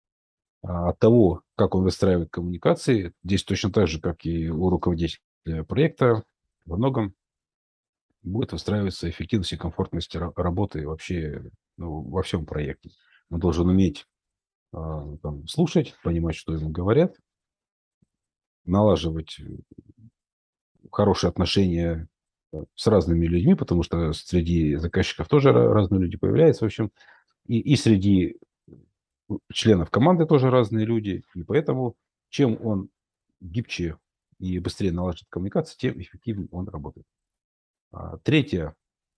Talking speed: 115 wpm